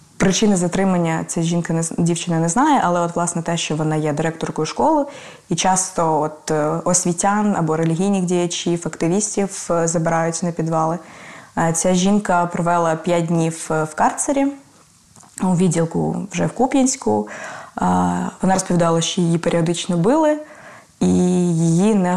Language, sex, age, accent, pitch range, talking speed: Ukrainian, female, 20-39, native, 170-200 Hz, 130 wpm